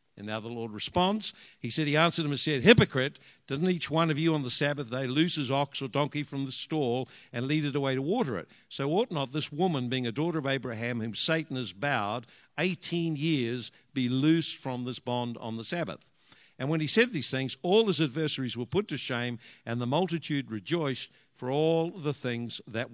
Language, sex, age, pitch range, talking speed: English, male, 60-79, 130-165 Hz, 215 wpm